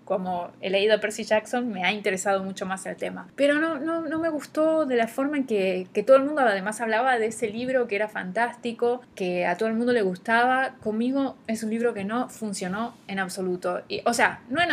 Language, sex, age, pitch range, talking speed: Spanish, female, 20-39, 200-250 Hz, 230 wpm